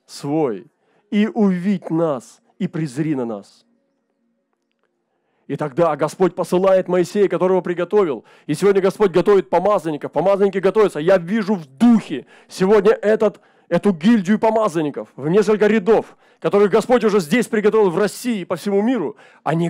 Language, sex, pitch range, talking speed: Russian, male, 165-215 Hz, 140 wpm